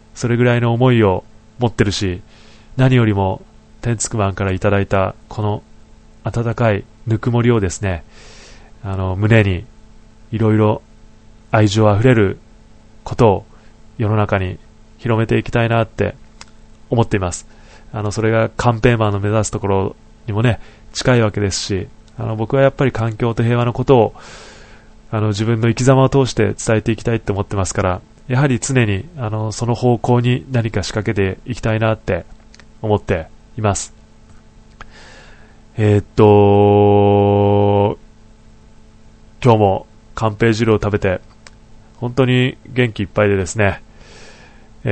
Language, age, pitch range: Japanese, 20-39, 105-120 Hz